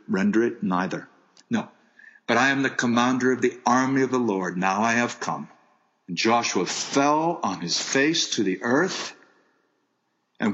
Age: 60-79